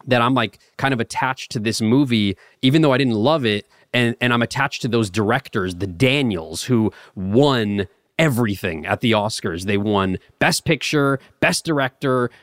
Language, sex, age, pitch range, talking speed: English, male, 30-49, 105-135 Hz, 175 wpm